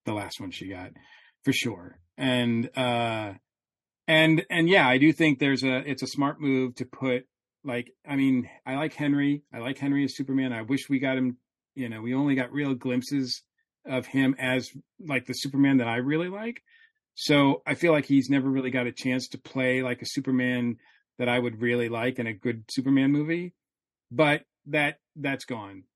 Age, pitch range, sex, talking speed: 40-59, 120-140 Hz, male, 195 wpm